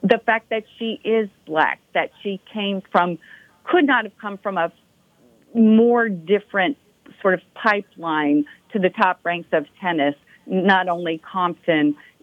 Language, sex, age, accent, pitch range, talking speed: English, female, 50-69, American, 160-225 Hz, 145 wpm